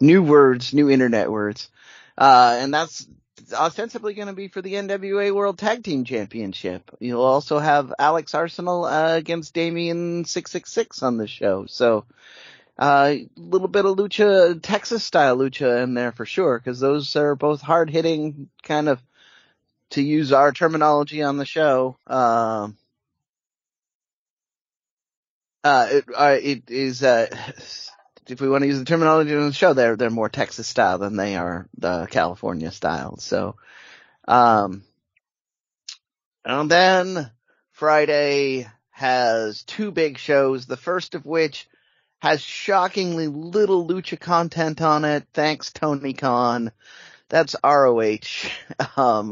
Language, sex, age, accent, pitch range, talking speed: English, male, 30-49, American, 125-170 Hz, 140 wpm